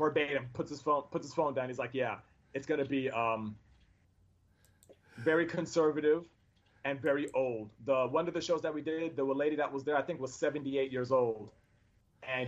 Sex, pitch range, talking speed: male, 115-160 Hz, 190 wpm